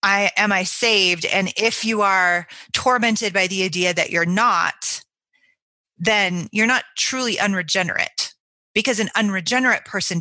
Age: 30-49